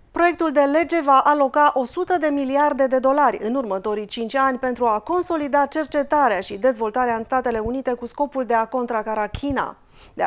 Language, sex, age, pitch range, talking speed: Romanian, female, 30-49, 230-295 Hz, 175 wpm